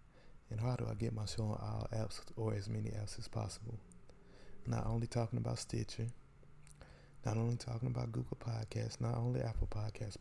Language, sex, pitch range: English, male, 105-120 Hz